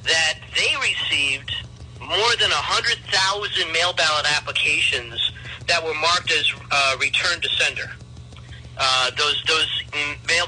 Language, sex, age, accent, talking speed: English, male, 40-59, American, 120 wpm